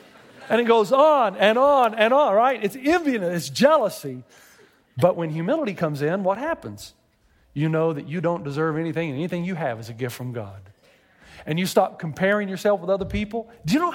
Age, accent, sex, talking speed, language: 40-59, American, male, 200 wpm, English